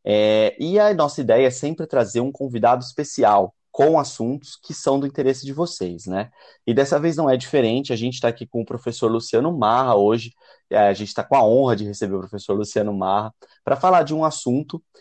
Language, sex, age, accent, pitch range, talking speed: Portuguese, male, 20-39, Brazilian, 105-140 Hz, 215 wpm